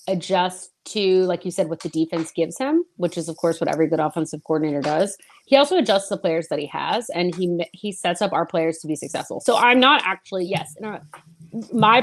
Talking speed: 225 wpm